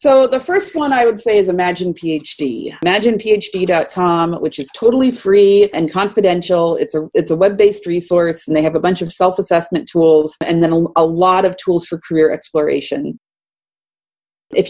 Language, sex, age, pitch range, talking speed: English, female, 40-59, 170-235 Hz, 165 wpm